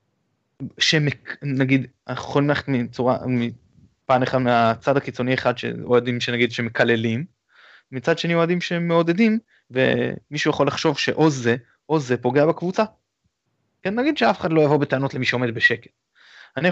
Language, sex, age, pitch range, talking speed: Hebrew, male, 20-39, 120-145 Hz, 125 wpm